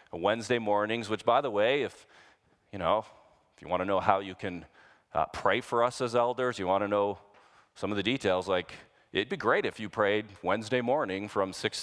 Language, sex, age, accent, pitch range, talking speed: English, male, 40-59, American, 95-125 Hz, 205 wpm